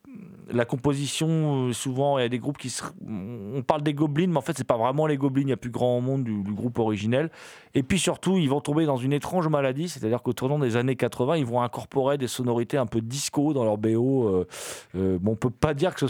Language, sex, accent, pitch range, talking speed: French, male, French, 115-170 Hz, 255 wpm